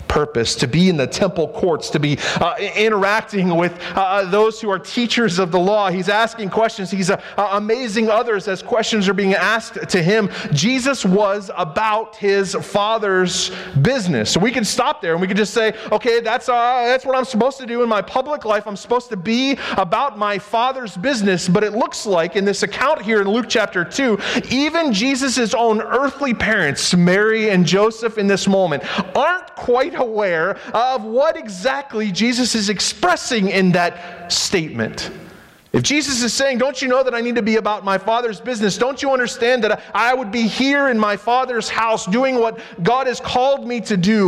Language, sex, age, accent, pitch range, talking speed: English, male, 30-49, American, 195-250 Hz, 190 wpm